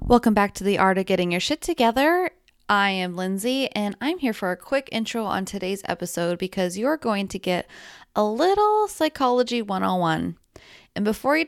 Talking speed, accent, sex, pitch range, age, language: 185 wpm, American, female, 180-230 Hz, 20-39, English